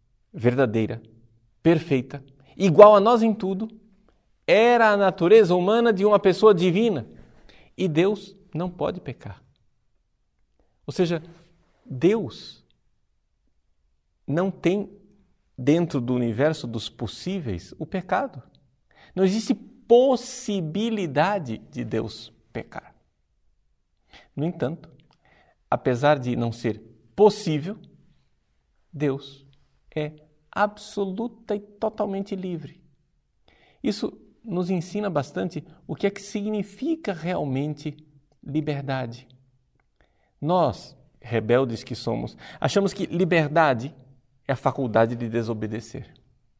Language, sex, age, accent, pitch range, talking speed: Portuguese, male, 50-69, Brazilian, 120-190 Hz, 95 wpm